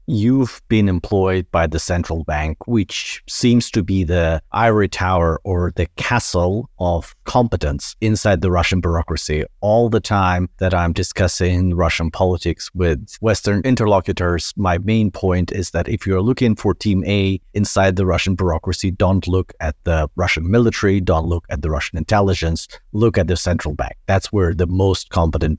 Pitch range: 85-105 Hz